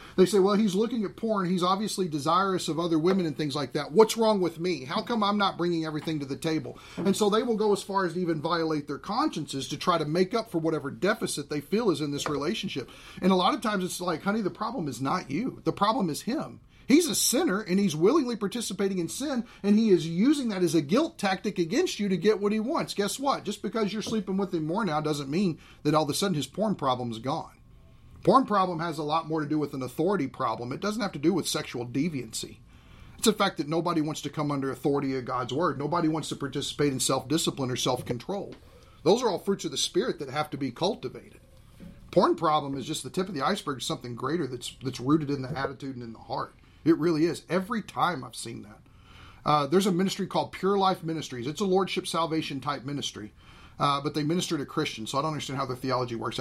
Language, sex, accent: English, male, American